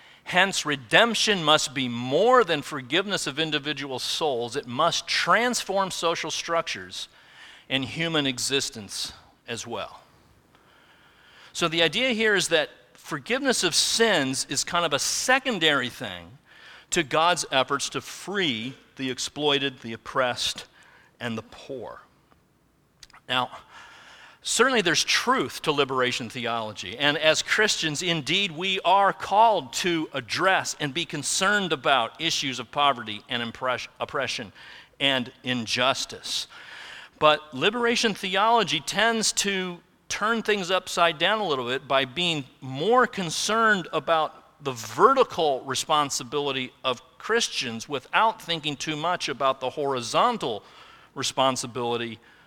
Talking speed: 120 wpm